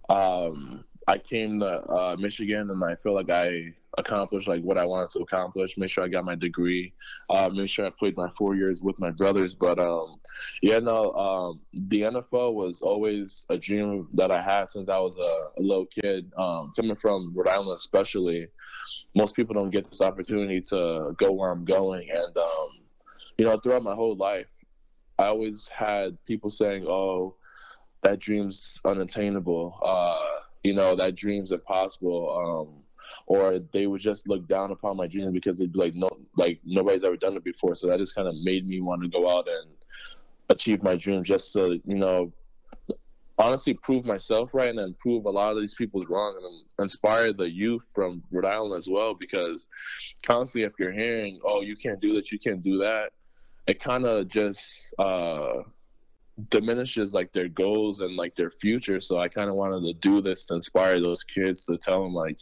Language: English